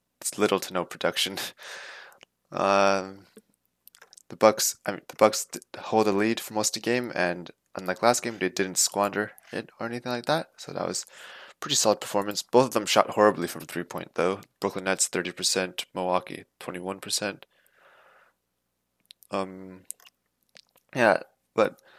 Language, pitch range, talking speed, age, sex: English, 85-110 Hz, 160 wpm, 20-39, male